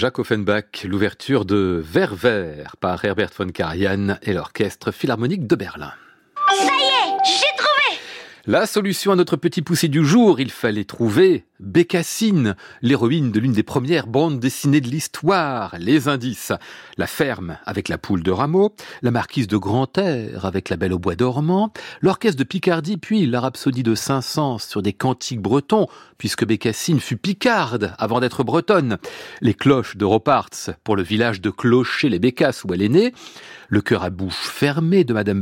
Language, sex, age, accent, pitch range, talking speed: French, male, 40-59, French, 110-170 Hz, 160 wpm